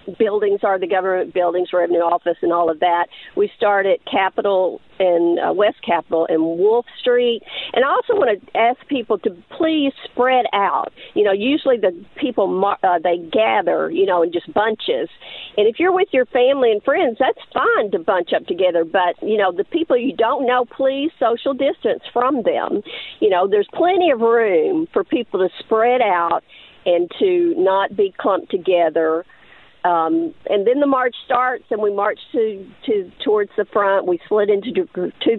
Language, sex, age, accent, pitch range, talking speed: English, female, 50-69, American, 190-275 Hz, 185 wpm